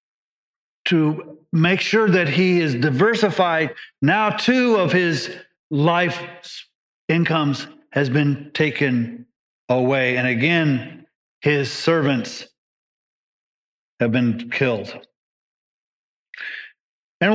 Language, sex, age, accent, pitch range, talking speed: English, male, 50-69, American, 145-195 Hz, 85 wpm